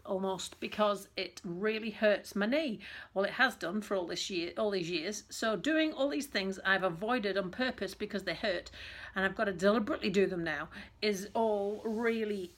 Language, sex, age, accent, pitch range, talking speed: English, female, 40-59, British, 195-235 Hz, 195 wpm